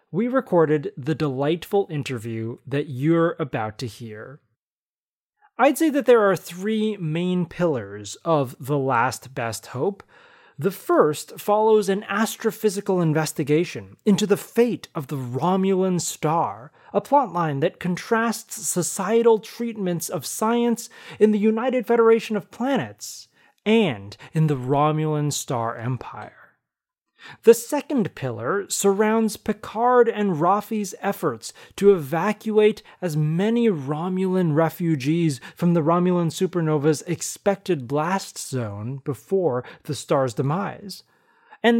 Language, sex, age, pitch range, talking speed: English, male, 30-49, 145-210 Hz, 120 wpm